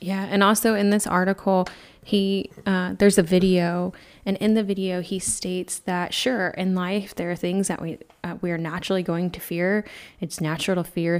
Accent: American